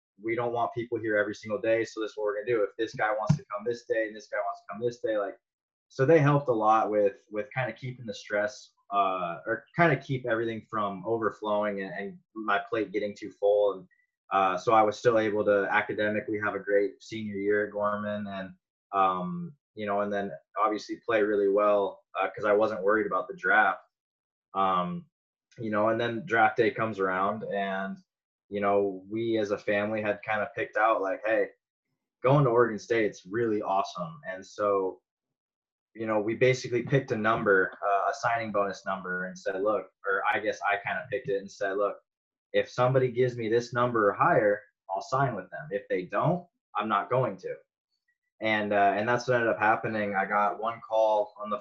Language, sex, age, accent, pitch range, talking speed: English, male, 20-39, American, 100-120 Hz, 215 wpm